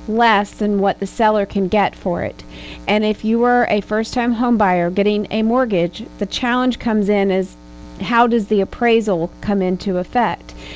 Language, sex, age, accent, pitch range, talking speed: English, female, 40-59, American, 190-225 Hz, 185 wpm